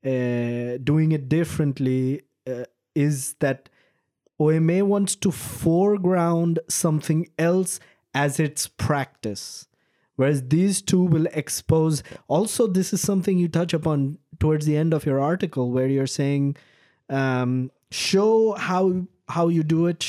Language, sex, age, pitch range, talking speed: English, male, 20-39, 130-175 Hz, 130 wpm